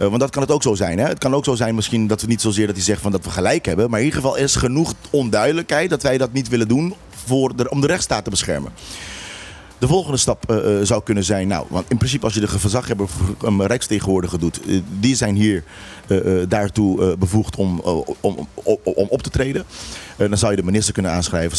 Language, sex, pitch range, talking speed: Dutch, male, 95-115 Hz, 255 wpm